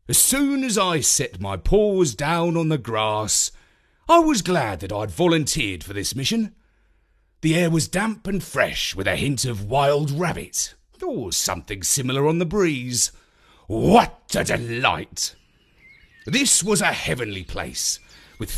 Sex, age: male, 40-59